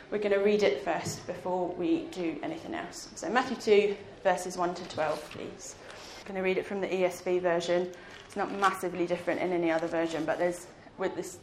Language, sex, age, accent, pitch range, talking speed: English, female, 30-49, British, 175-215 Hz, 205 wpm